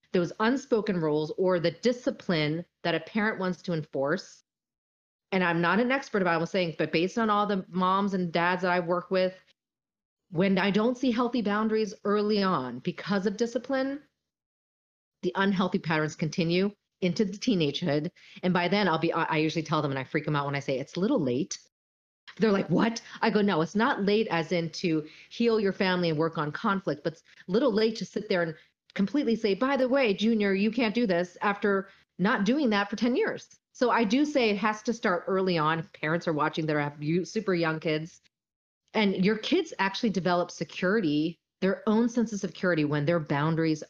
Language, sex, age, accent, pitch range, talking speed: English, female, 30-49, American, 165-220 Hz, 205 wpm